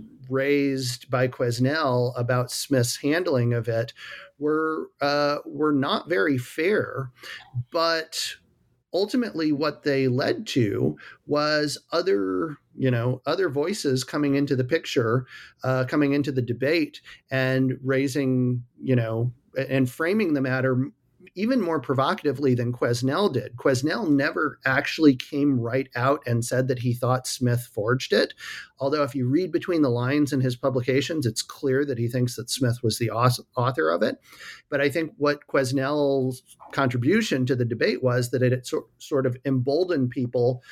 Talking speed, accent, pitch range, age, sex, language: 150 wpm, American, 125-145 Hz, 40-59, male, English